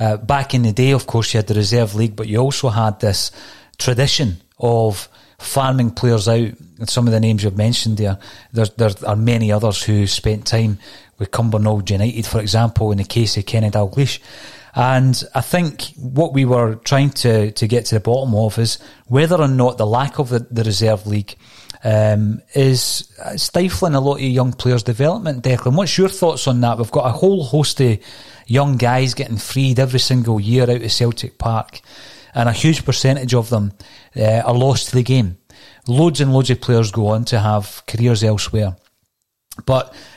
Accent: British